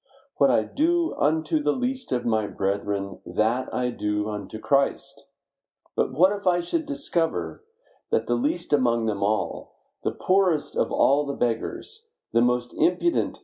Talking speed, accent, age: 155 wpm, American, 50-69